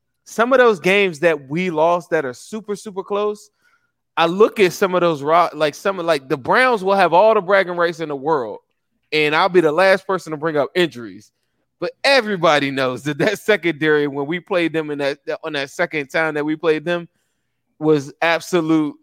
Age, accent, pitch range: 20-39, American, 140-175 Hz